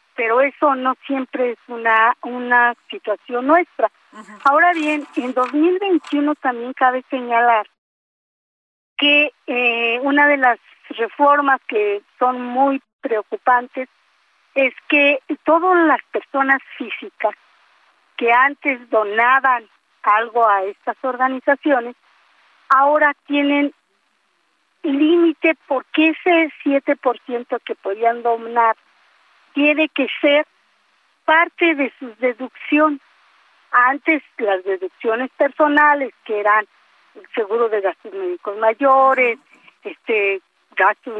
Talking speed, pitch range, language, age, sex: 100 wpm, 235-295 Hz, Spanish, 50-69, female